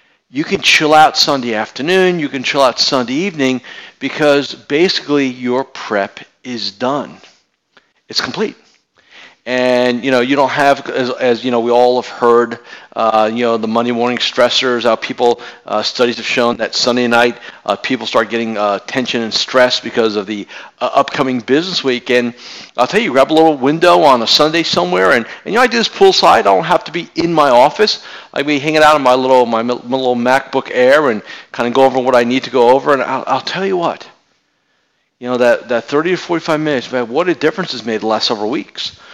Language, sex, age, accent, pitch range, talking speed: English, male, 50-69, American, 120-170 Hz, 215 wpm